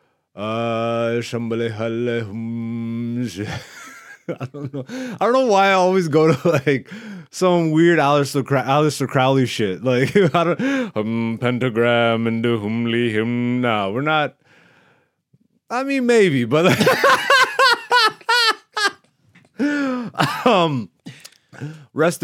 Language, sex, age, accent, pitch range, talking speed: English, male, 30-49, American, 115-175 Hz, 95 wpm